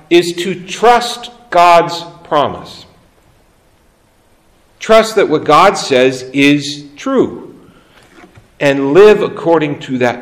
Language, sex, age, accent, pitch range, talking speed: English, male, 50-69, American, 125-170 Hz, 100 wpm